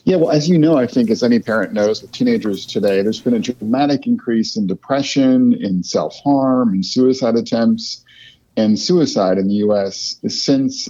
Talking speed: 175 wpm